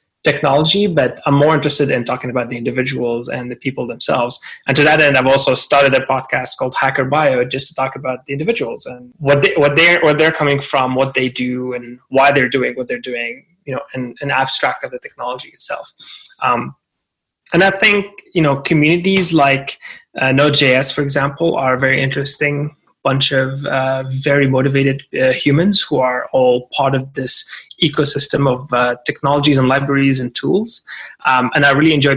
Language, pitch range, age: English, 130-145 Hz, 20-39